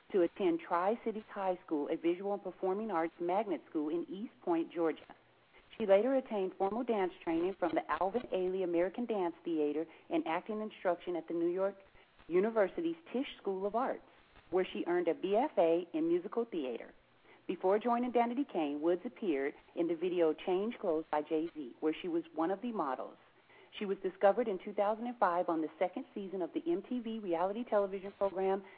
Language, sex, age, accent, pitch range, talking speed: English, female, 40-59, American, 175-240 Hz, 175 wpm